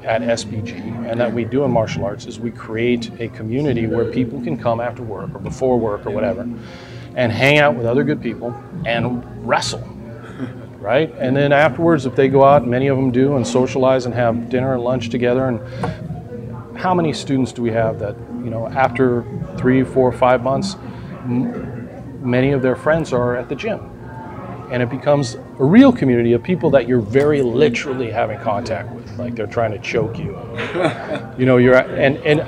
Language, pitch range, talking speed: English, 120-135 Hz, 190 wpm